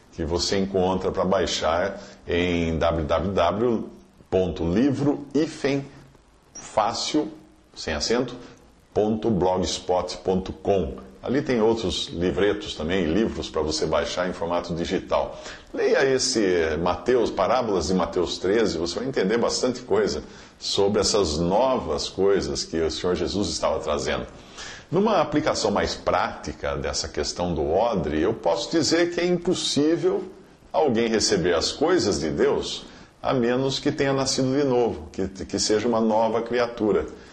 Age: 50-69